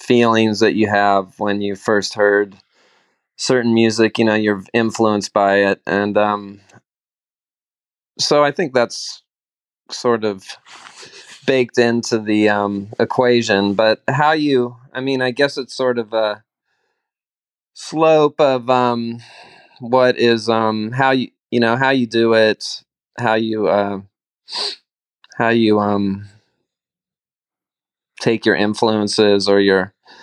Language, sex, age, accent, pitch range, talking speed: English, male, 20-39, American, 100-115 Hz, 130 wpm